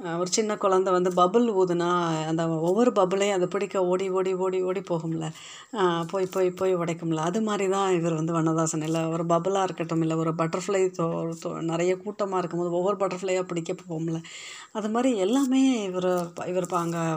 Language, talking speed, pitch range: Tamil, 155 wpm, 175-200 Hz